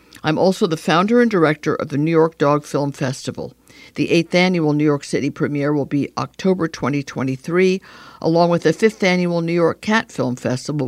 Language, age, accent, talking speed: English, 60-79, American, 190 wpm